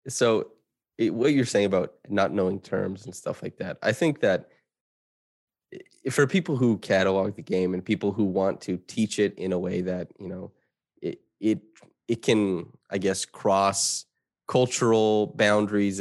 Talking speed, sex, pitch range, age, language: 165 wpm, male, 95-110 Hz, 20-39, English